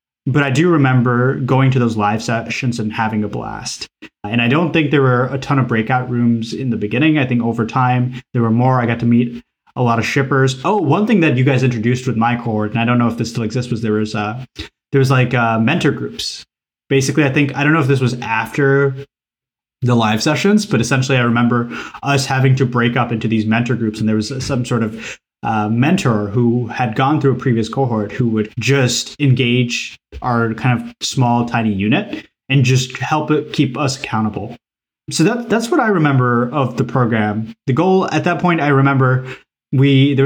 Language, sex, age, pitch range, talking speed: English, male, 20-39, 115-135 Hz, 220 wpm